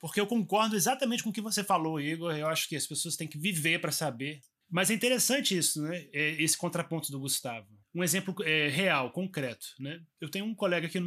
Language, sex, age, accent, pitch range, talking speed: Portuguese, male, 20-39, Brazilian, 145-190 Hz, 220 wpm